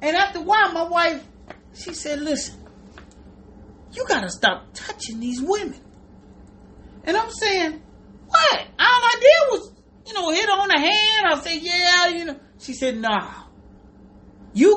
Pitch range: 190-315 Hz